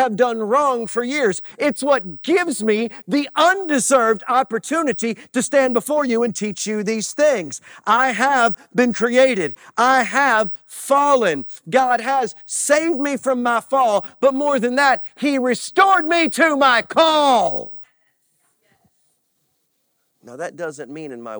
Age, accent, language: 40-59, American, English